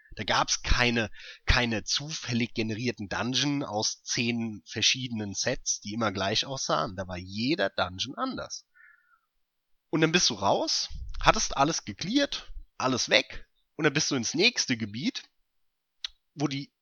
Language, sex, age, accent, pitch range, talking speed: German, male, 30-49, German, 105-145 Hz, 145 wpm